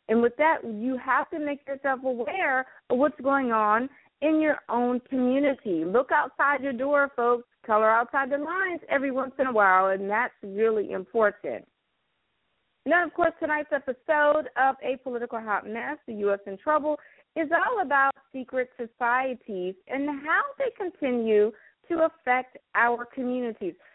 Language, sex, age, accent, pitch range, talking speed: English, female, 40-59, American, 210-285 Hz, 155 wpm